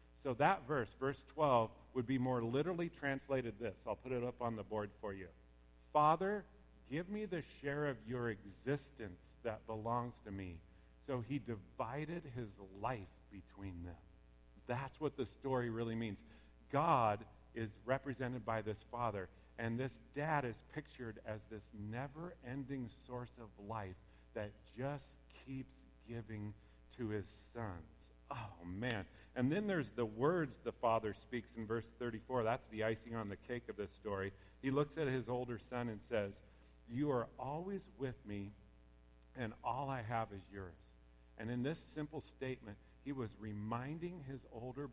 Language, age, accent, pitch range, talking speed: English, 50-69, American, 100-130 Hz, 160 wpm